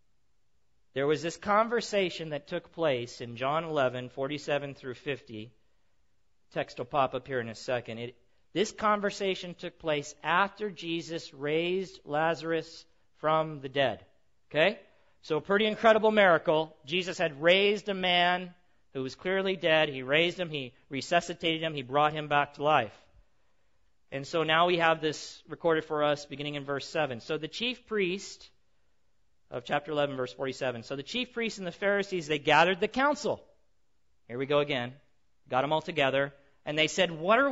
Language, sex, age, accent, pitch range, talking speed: English, male, 40-59, American, 140-220 Hz, 170 wpm